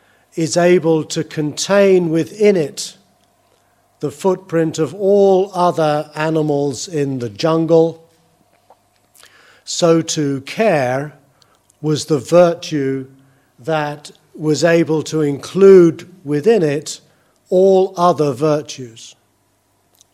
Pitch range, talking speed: 125-170 Hz, 90 wpm